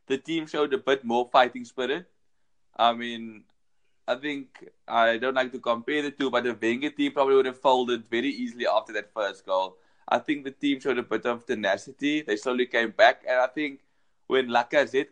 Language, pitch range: English, 115-140 Hz